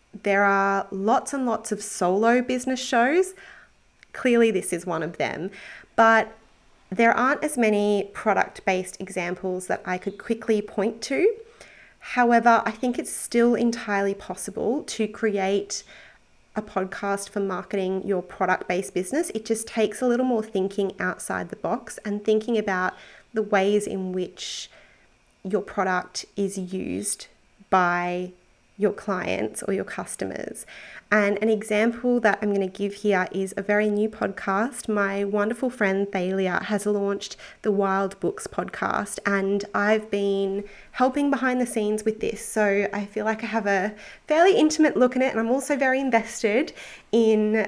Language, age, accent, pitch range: English, 30-49, Australian, 195-230 Hz